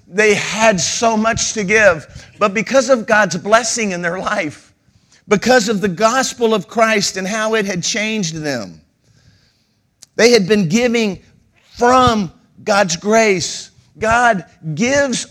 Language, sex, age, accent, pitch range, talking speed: English, male, 50-69, American, 185-235 Hz, 135 wpm